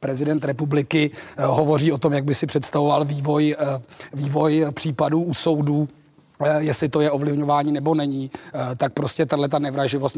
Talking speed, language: 160 wpm, Czech